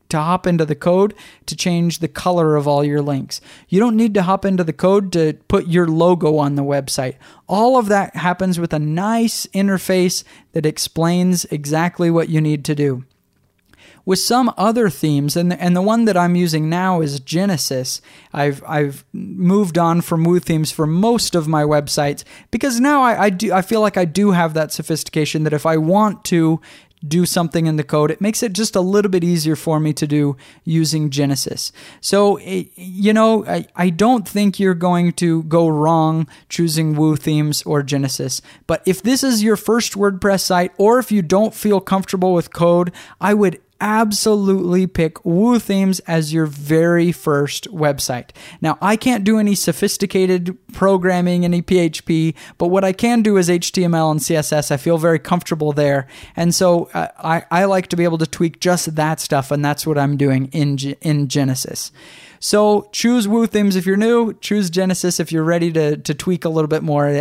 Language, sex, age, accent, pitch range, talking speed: English, male, 20-39, American, 155-195 Hz, 190 wpm